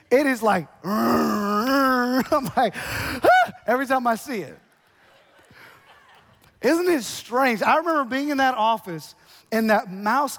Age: 30-49